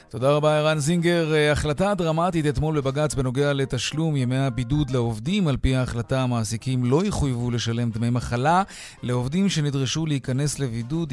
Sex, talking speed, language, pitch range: male, 140 wpm, Hebrew, 110-150 Hz